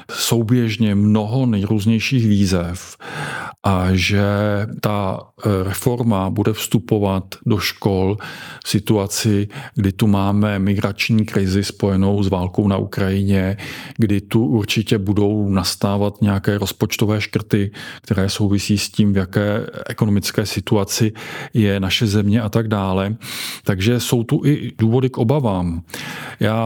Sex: male